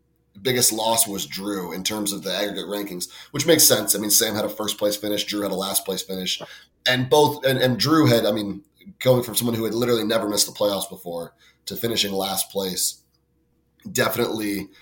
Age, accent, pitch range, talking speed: 30-49, American, 100-120 Hz, 205 wpm